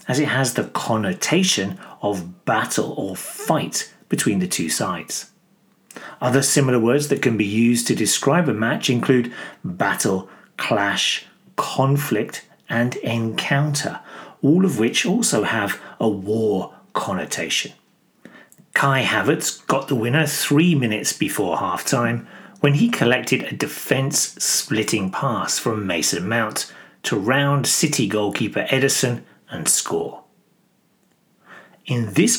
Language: English